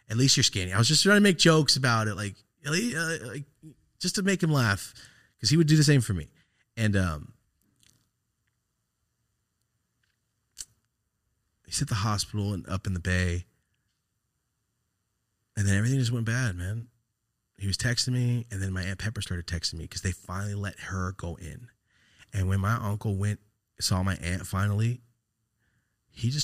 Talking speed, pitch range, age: 180 wpm, 95-120 Hz, 30-49